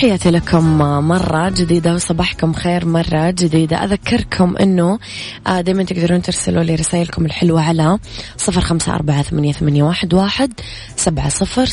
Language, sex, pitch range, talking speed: Arabic, female, 160-190 Hz, 125 wpm